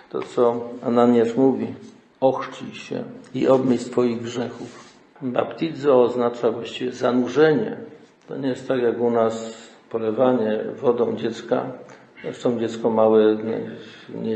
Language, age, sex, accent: Polish, 50-69, male, native